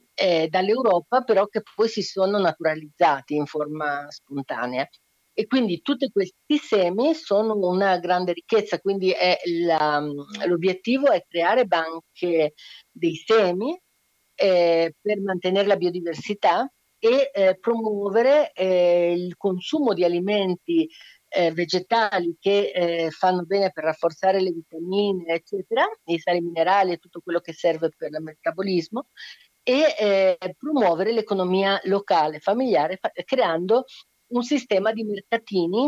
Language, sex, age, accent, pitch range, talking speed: Italian, female, 50-69, native, 170-215 Hz, 125 wpm